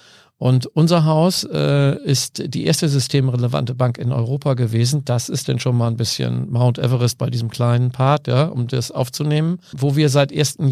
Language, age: German, 50-69